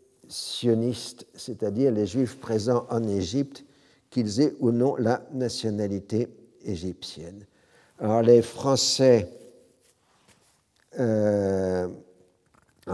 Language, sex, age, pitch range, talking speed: French, male, 60-79, 100-120 Hz, 85 wpm